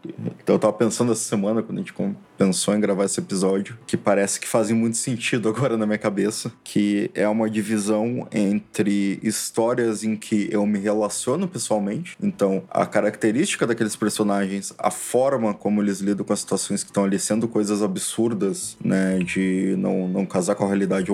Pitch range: 105-120 Hz